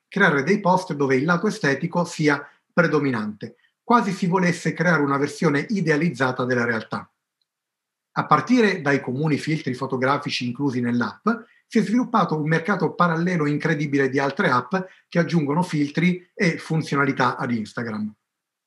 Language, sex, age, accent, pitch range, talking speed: Italian, male, 40-59, native, 140-185 Hz, 140 wpm